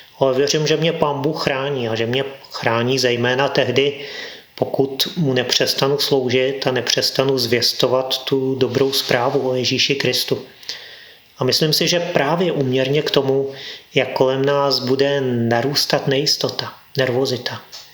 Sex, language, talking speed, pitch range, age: male, Czech, 135 wpm, 125-135 Hz, 30-49